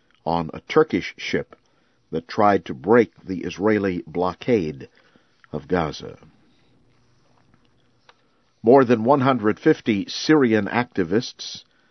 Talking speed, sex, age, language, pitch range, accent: 90 wpm, male, 50-69, English, 100-125 Hz, American